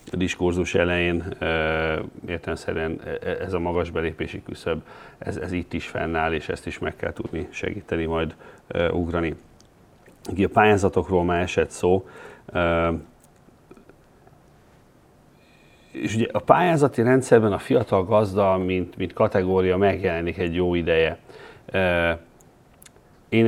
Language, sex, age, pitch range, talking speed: Hungarian, male, 40-59, 85-100 Hz, 110 wpm